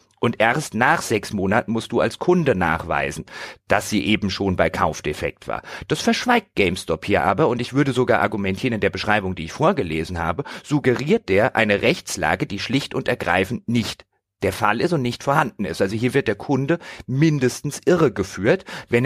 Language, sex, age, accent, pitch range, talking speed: German, male, 40-59, German, 100-135 Hz, 185 wpm